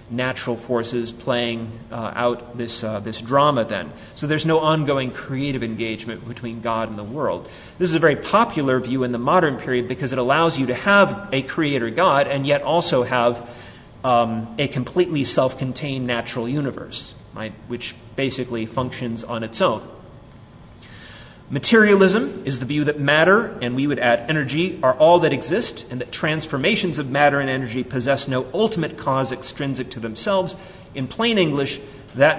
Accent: American